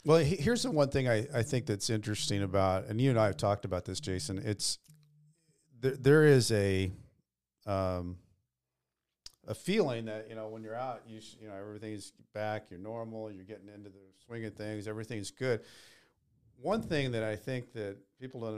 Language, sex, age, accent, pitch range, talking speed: English, male, 50-69, American, 100-125 Hz, 190 wpm